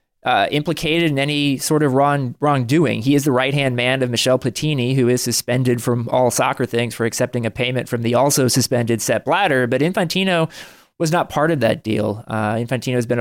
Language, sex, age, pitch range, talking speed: English, male, 20-39, 115-140 Hz, 205 wpm